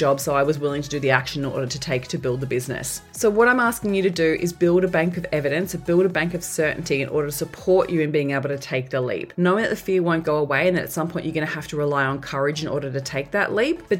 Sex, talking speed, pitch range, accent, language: female, 315 wpm, 145-185 Hz, Australian, English